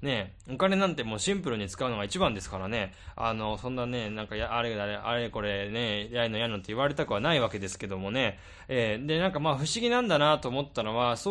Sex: male